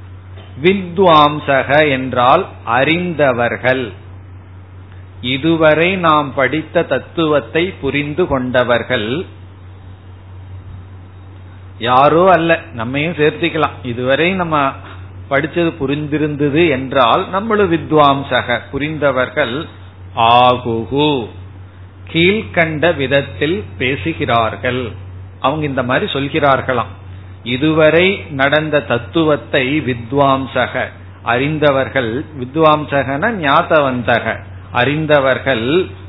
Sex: male